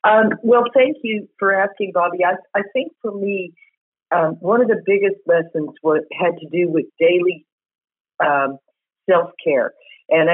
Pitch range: 165-205 Hz